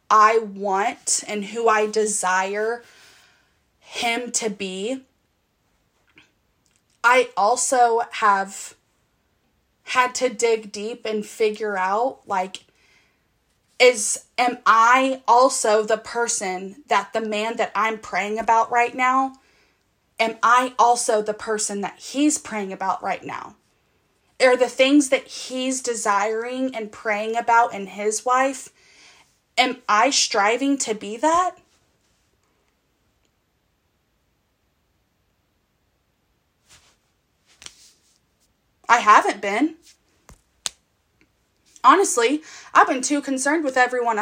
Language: English